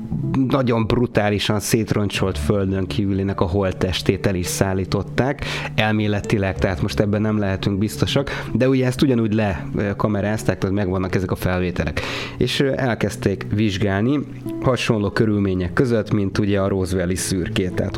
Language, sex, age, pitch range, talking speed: Hungarian, male, 30-49, 95-115 Hz, 130 wpm